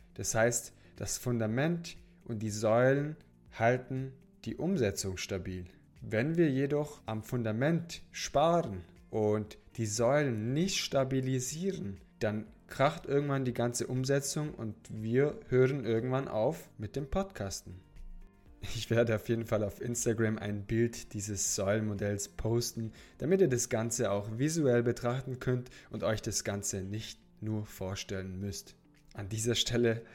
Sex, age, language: male, 20-39, German